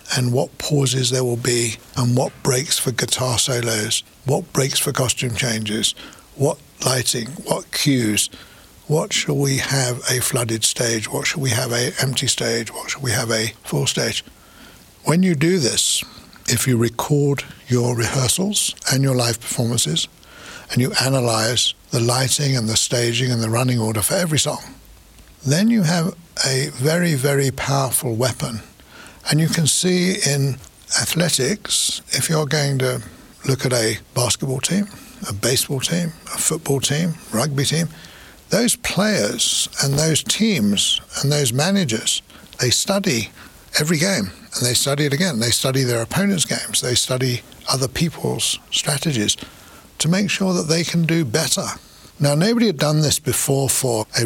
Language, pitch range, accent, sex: English, 120-155 Hz, British, male